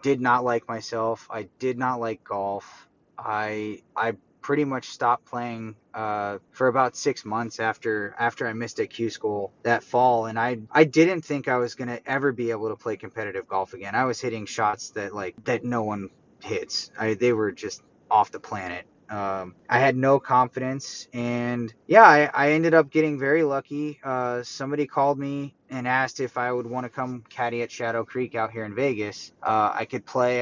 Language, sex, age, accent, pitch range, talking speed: English, male, 20-39, American, 110-135 Hz, 200 wpm